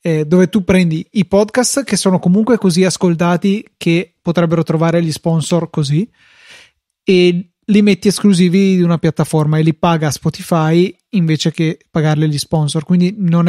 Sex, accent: male, native